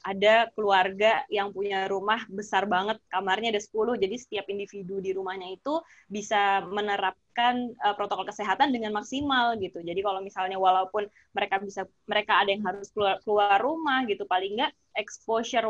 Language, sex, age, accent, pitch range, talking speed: Indonesian, female, 20-39, native, 200-240 Hz, 155 wpm